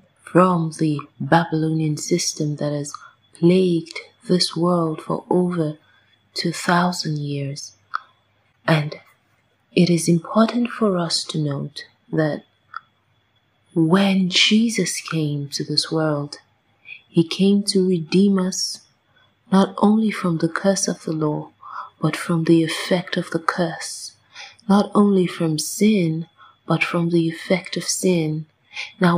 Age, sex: 30-49, female